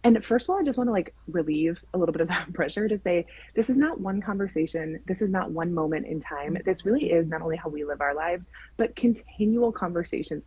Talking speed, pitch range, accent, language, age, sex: 240 wpm, 165-225 Hz, American, English, 20-39, female